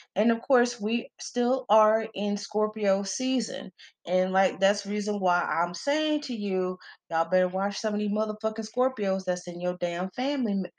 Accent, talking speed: American, 180 wpm